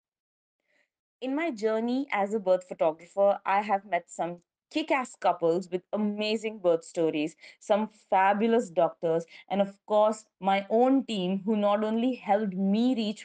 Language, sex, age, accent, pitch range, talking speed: English, female, 20-39, Indian, 175-215 Hz, 150 wpm